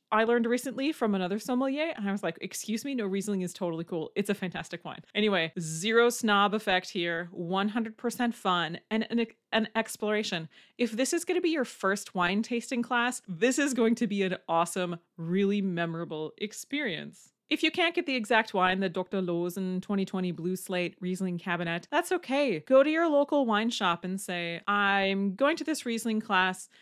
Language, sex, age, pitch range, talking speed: English, female, 30-49, 180-235 Hz, 190 wpm